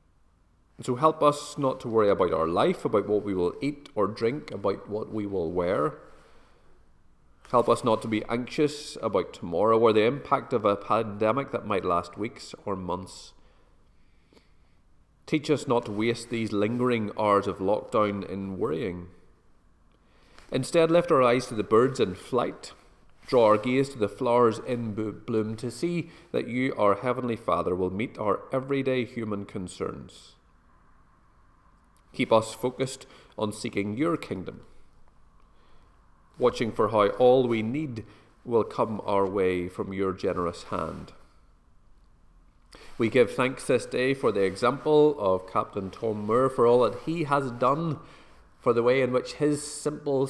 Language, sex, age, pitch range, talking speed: English, male, 30-49, 100-125 Hz, 155 wpm